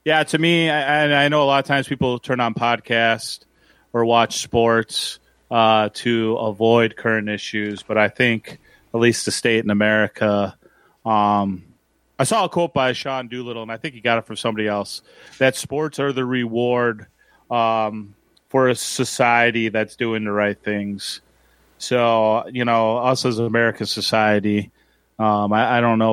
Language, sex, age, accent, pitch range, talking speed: English, male, 30-49, American, 105-120 Hz, 170 wpm